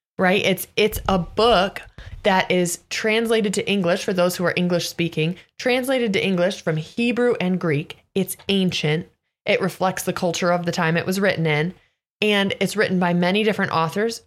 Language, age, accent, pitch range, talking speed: English, 20-39, American, 160-195 Hz, 180 wpm